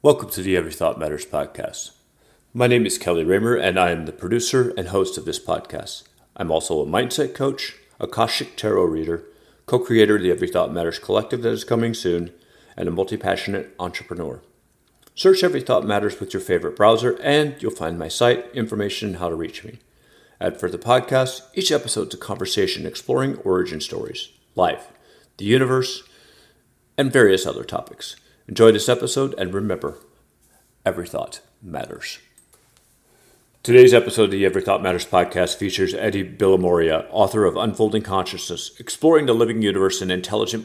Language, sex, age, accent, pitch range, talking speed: English, male, 40-59, American, 95-125 Hz, 165 wpm